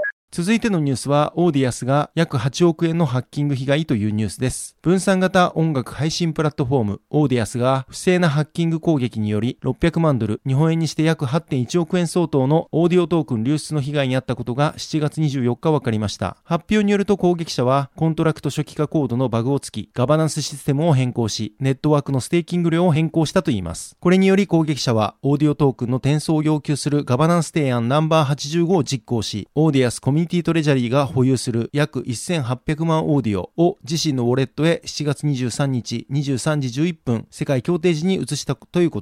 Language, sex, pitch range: Japanese, male, 130-165 Hz